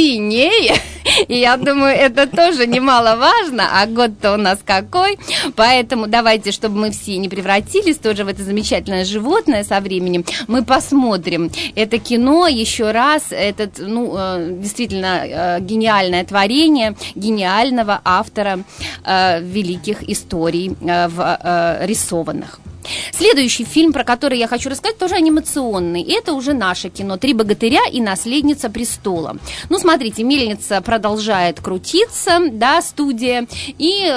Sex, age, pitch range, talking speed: female, 30-49, 195-275 Hz, 115 wpm